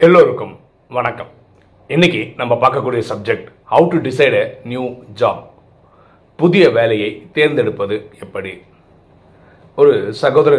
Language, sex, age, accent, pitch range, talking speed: Tamil, male, 40-59, native, 100-150 Hz, 100 wpm